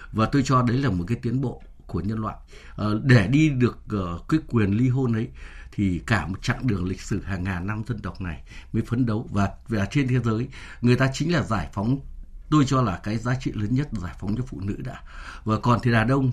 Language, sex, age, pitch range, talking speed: Vietnamese, male, 60-79, 100-135 Hz, 250 wpm